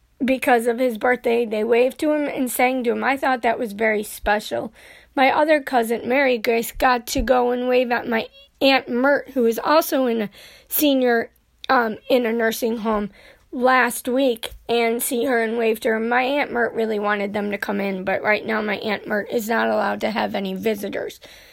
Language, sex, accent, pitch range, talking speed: English, female, American, 220-265 Hz, 205 wpm